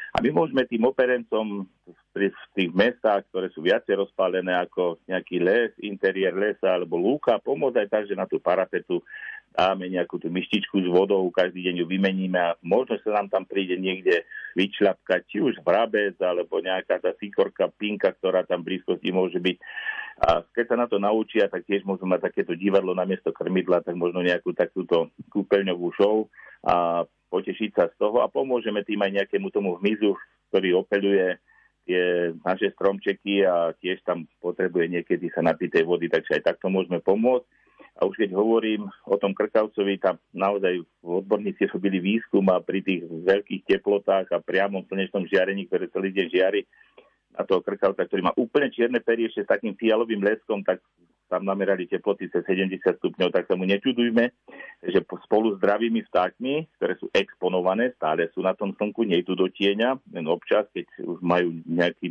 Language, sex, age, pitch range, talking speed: Slovak, male, 50-69, 90-120 Hz, 175 wpm